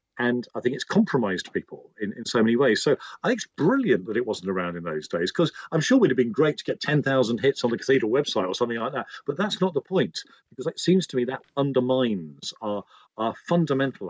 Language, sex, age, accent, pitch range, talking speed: English, male, 40-59, British, 110-160 Hz, 245 wpm